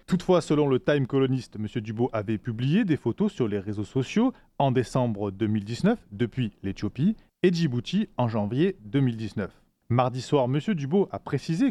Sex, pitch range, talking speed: male, 115-155 Hz, 160 wpm